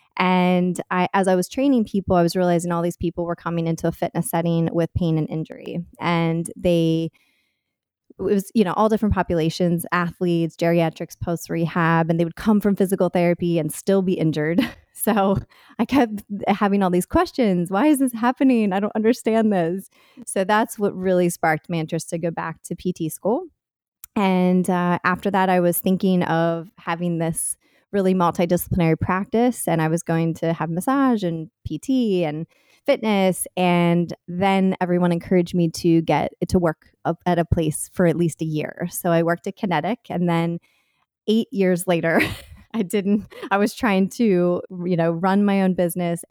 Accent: American